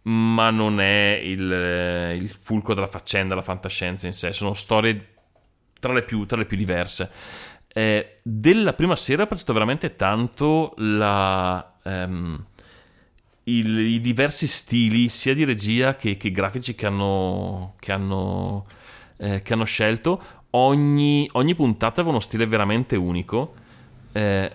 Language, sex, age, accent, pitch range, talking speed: Italian, male, 30-49, native, 95-125 Hz, 140 wpm